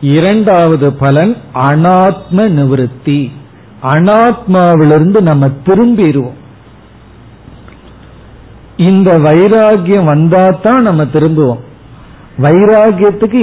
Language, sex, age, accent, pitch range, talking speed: Tamil, male, 50-69, native, 145-195 Hz, 55 wpm